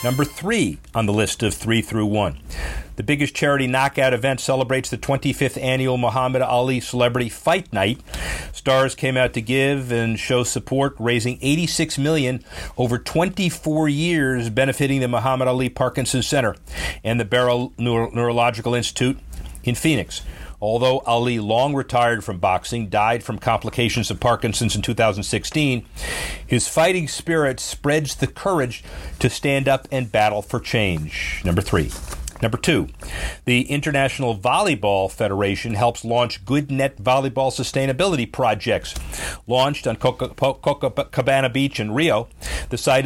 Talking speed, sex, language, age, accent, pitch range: 140 wpm, male, English, 40-59, American, 115-140 Hz